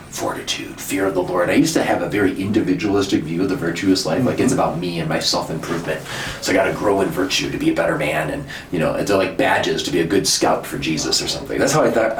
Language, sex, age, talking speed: English, male, 30-49, 270 wpm